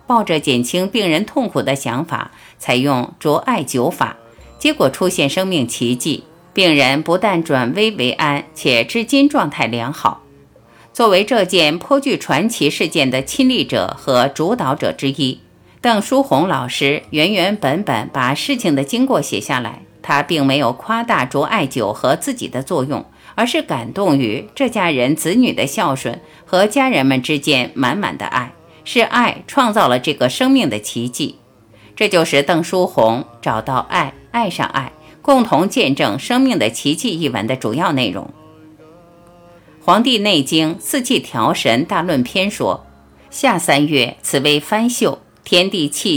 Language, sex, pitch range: Chinese, female, 135-230 Hz